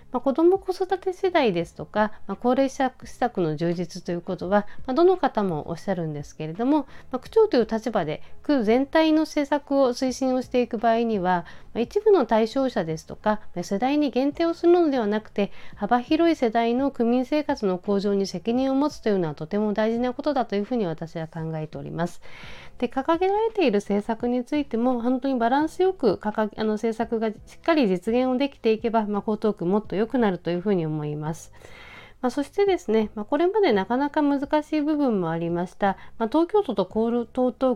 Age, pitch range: 40-59, 190-270 Hz